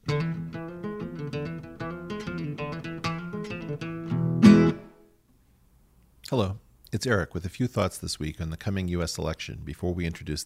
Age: 40-59